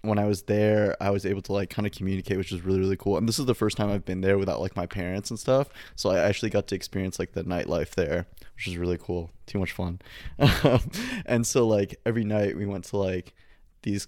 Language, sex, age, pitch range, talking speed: English, male, 20-39, 95-110 Hz, 250 wpm